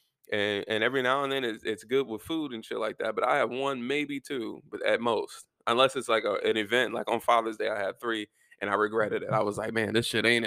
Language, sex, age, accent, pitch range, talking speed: English, male, 20-39, American, 110-130 Hz, 275 wpm